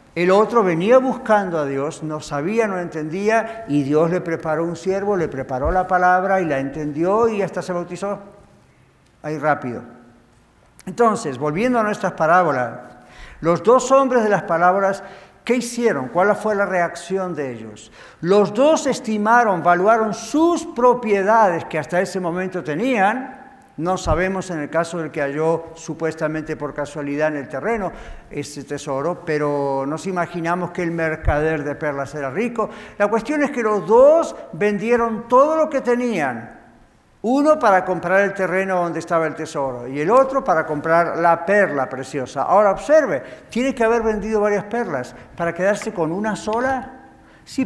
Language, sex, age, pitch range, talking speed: English, male, 60-79, 155-220 Hz, 160 wpm